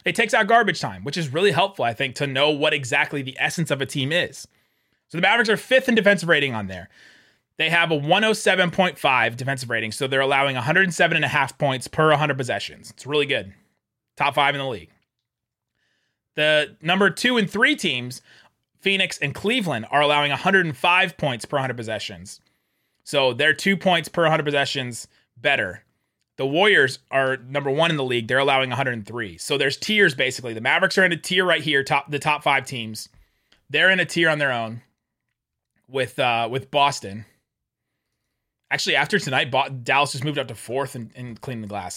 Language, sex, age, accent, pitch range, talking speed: English, male, 30-49, American, 120-165 Hz, 185 wpm